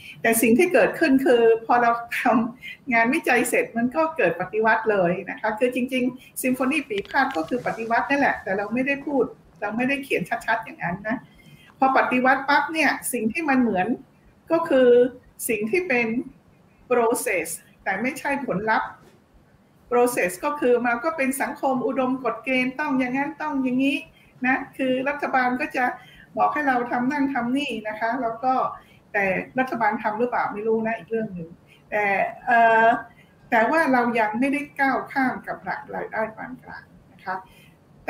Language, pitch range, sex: Thai, 215-265 Hz, female